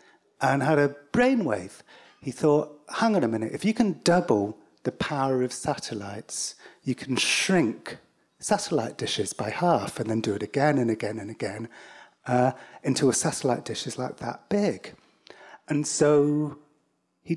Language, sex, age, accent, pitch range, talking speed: English, male, 40-59, British, 115-150 Hz, 160 wpm